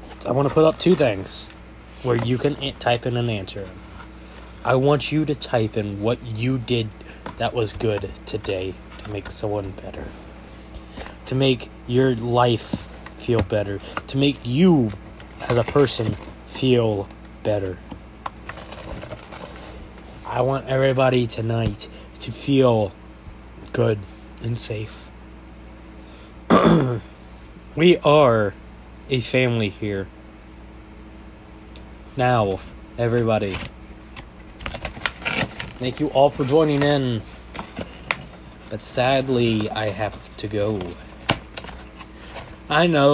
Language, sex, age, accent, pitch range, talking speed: English, male, 20-39, American, 100-130 Hz, 105 wpm